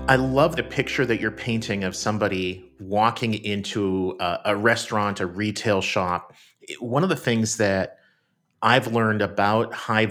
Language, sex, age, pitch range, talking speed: English, male, 40-59, 95-115 Hz, 155 wpm